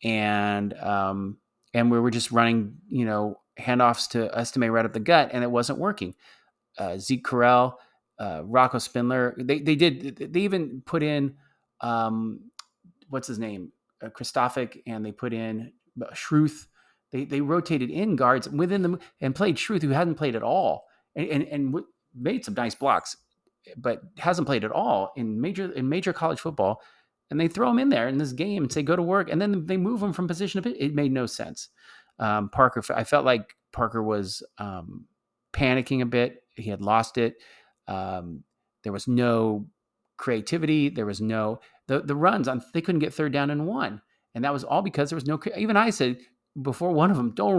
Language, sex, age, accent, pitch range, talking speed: English, male, 30-49, American, 115-155 Hz, 195 wpm